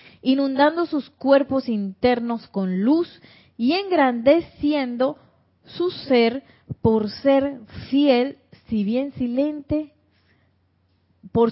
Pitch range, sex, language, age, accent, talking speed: 200-250 Hz, female, Spanish, 30-49, American, 90 wpm